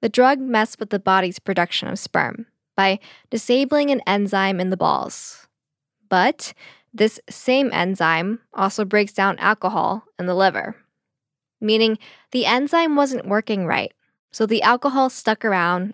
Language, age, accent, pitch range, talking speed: English, 10-29, American, 185-245 Hz, 145 wpm